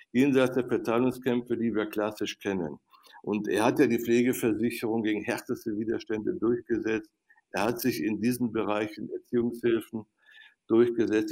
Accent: German